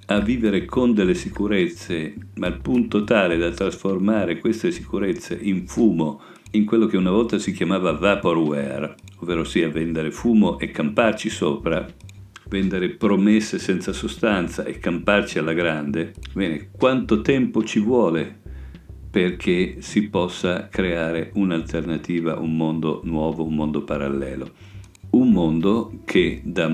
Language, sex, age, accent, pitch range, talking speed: Italian, male, 50-69, native, 80-95 Hz, 130 wpm